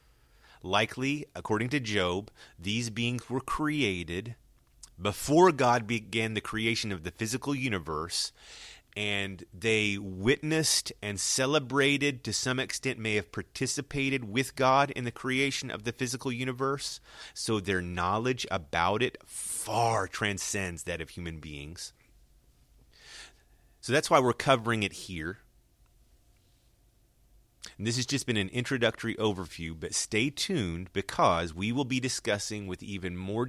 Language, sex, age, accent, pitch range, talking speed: English, male, 30-49, American, 90-120 Hz, 135 wpm